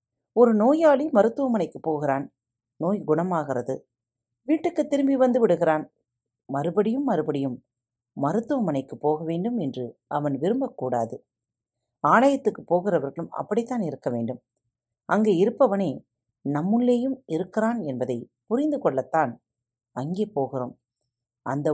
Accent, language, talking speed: native, Tamil, 90 wpm